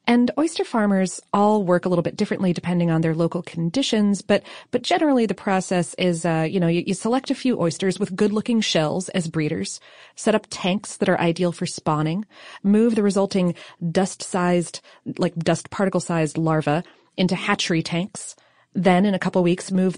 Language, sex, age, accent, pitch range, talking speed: English, female, 30-49, American, 170-210 Hz, 175 wpm